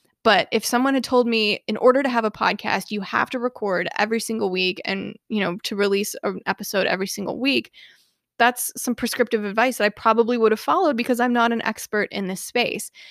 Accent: American